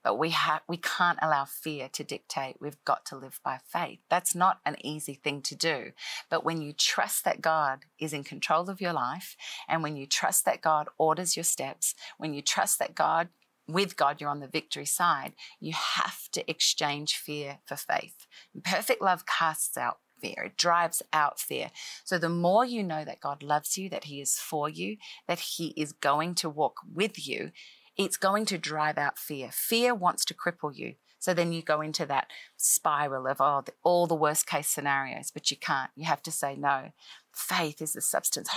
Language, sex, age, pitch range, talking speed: English, female, 40-59, 145-175 Hz, 200 wpm